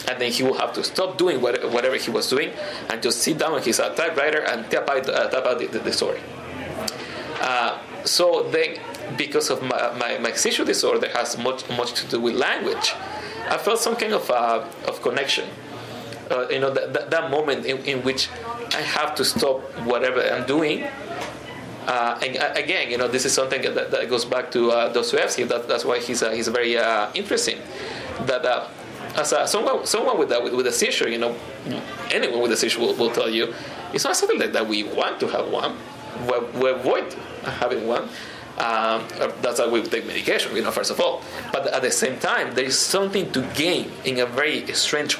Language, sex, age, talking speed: English, male, 20-39, 195 wpm